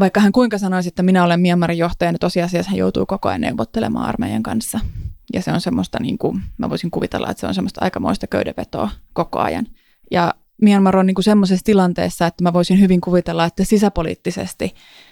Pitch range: 170-195 Hz